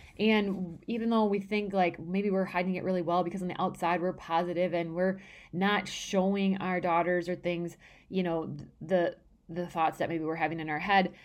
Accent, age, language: American, 20-39, English